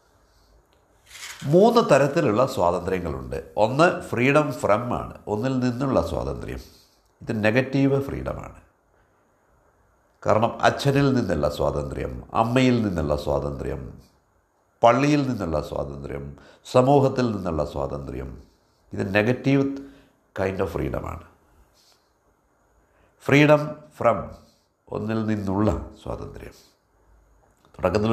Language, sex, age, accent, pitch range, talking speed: Malayalam, male, 60-79, native, 85-140 Hz, 80 wpm